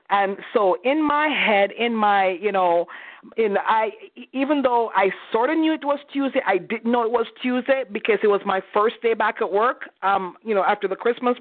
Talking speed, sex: 215 wpm, female